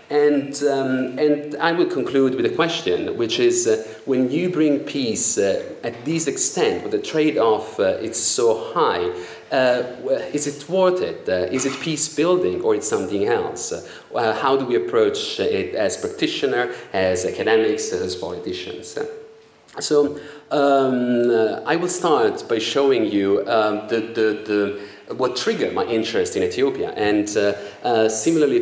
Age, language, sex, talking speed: 30-49, English, male, 155 wpm